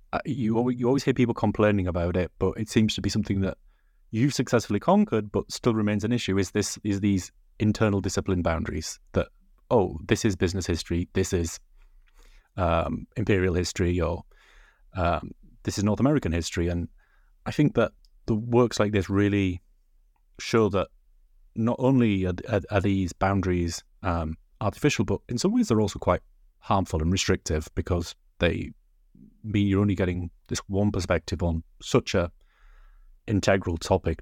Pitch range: 90-115 Hz